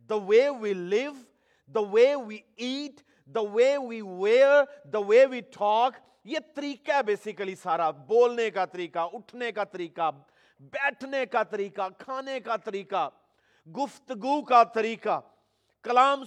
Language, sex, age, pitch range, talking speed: Urdu, male, 40-59, 215-280 Hz, 130 wpm